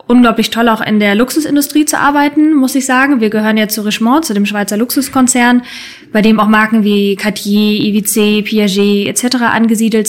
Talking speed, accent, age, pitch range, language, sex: 180 wpm, German, 20-39, 210-245 Hz, German, female